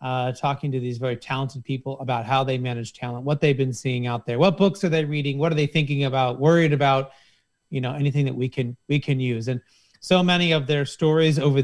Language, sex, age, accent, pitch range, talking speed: English, male, 30-49, American, 130-155 Hz, 235 wpm